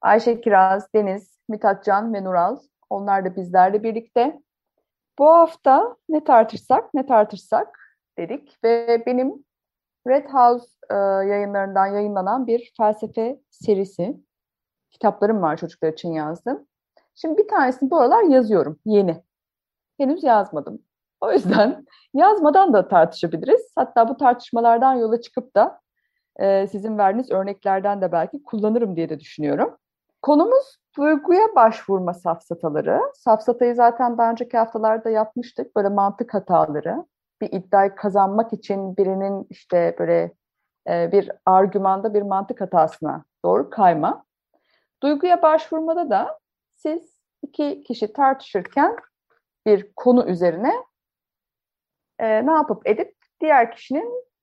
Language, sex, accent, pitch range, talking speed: Turkish, female, native, 195-275 Hz, 115 wpm